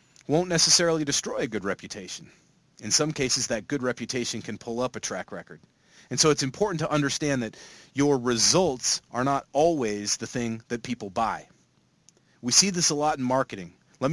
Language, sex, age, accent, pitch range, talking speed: English, male, 30-49, American, 115-150 Hz, 185 wpm